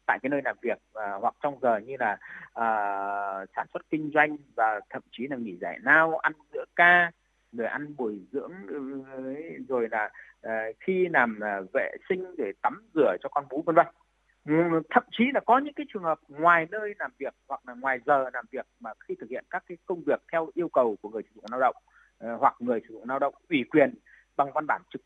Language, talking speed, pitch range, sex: Vietnamese, 225 wpm, 145-235 Hz, male